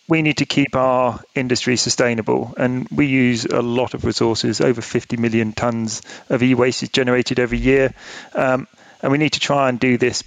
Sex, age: male, 40-59